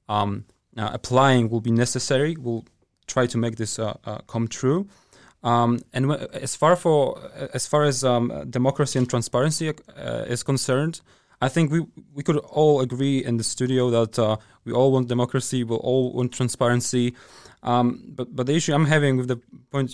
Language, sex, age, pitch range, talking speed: English, male, 20-39, 120-140 Hz, 185 wpm